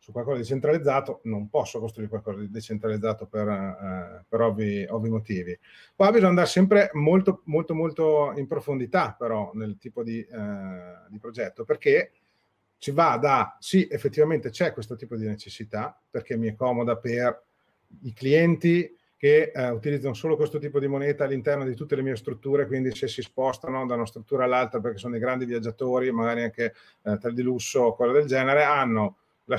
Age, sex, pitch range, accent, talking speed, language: 30-49, male, 115-150 Hz, native, 180 wpm, Italian